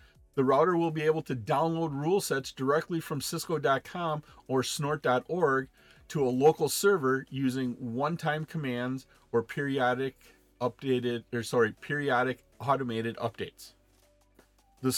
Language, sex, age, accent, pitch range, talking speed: English, male, 40-59, American, 125-155 Hz, 120 wpm